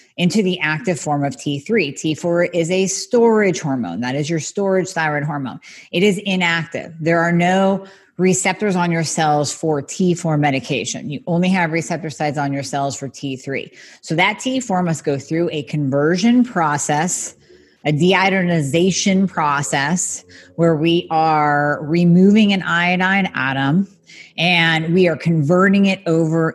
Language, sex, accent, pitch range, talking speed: English, female, American, 155-195 Hz, 145 wpm